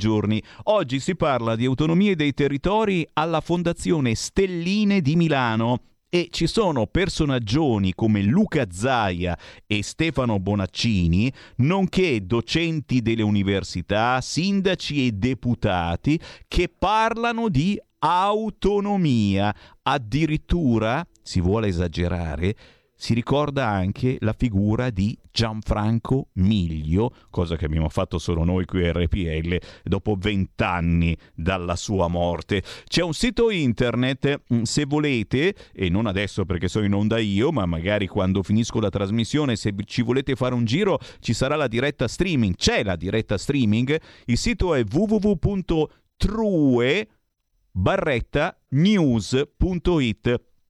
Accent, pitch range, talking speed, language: native, 100-150 Hz, 115 wpm, Italian